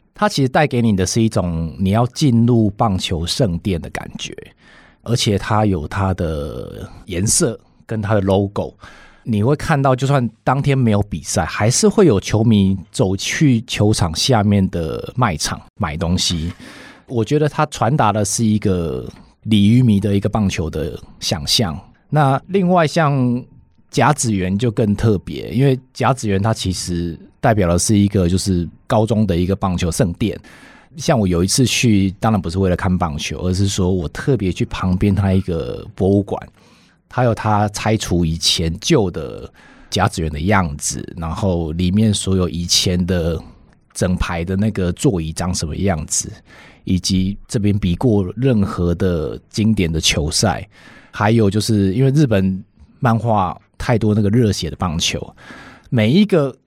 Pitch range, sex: 90-115 Hz, male